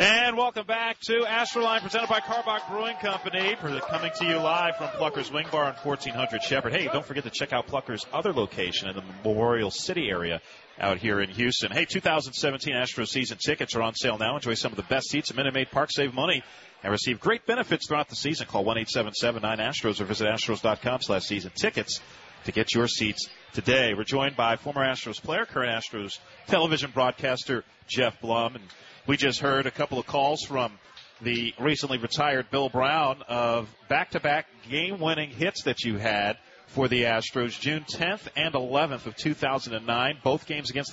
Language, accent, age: English, American, 40-59